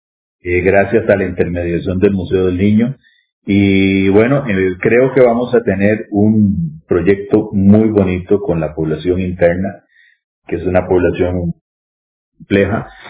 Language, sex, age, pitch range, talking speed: English, male, 40-59, 95-130 Hz, 140 wpm